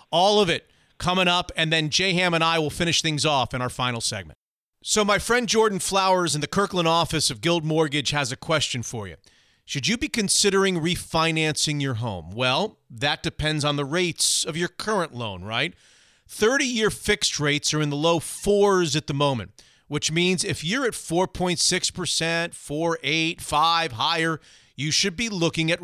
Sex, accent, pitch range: male, American, 135-180 Hz